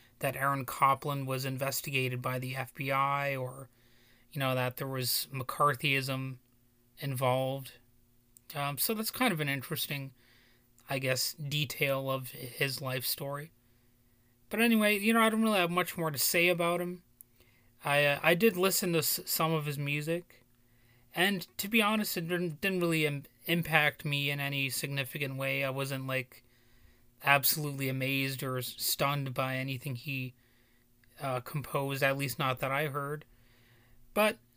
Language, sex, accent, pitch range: English, male, American, 120-155 Hz